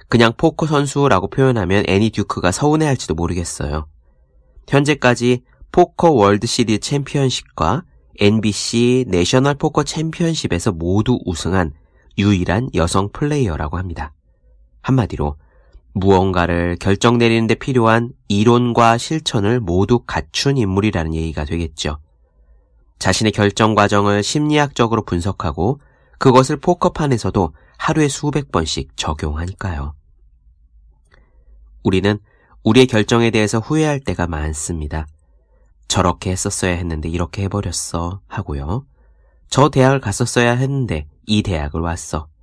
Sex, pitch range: male, 75-120 Hz